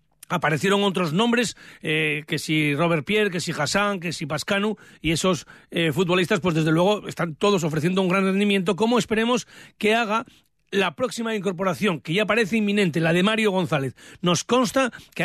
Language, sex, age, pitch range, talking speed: Spanish, male, 40-59, 170-205 Hz, 175 wpm